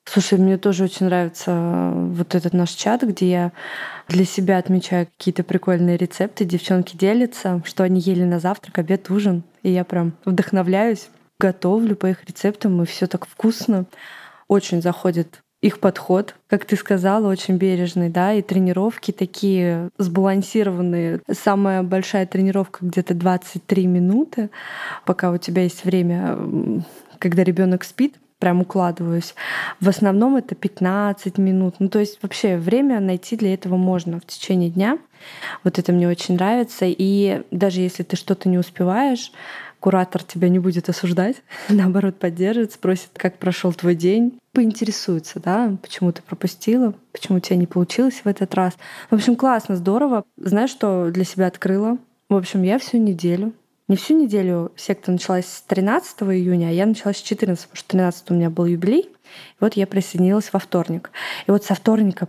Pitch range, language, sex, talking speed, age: 180-205 Hz, Russian, female, 160 wpm, 20-39